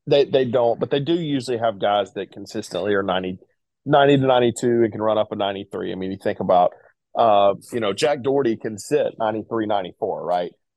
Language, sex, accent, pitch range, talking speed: English, male, American, 95-115 Hz, 205 wpm